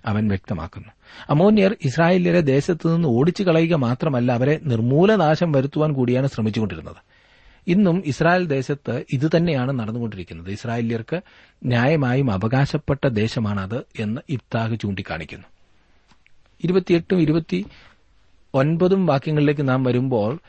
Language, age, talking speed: Malayalam, 40-59, 80 wpm